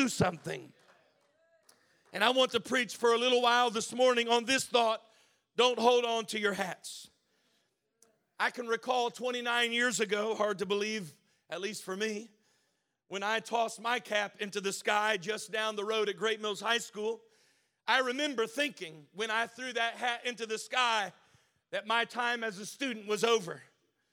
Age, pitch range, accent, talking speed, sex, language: 40-59, 220-255 Hz, American, 175 wpm, male, English